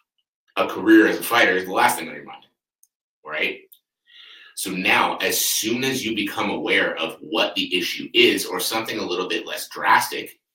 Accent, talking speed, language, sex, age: American, 190 wpm, English, male, 30-49